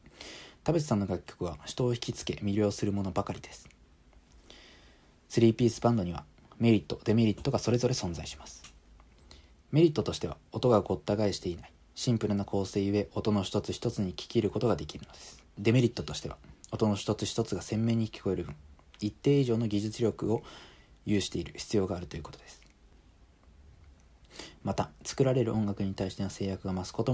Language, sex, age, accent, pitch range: Japanese, male, 40-59, native, 80-110 Hz